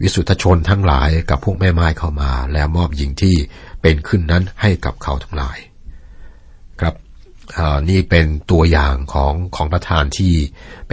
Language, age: Thai, 60-79